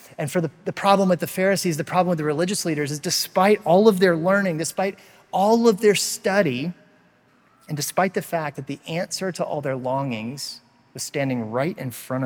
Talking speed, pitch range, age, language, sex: 200 wpm, 135-180 Hz, 30-49, English, male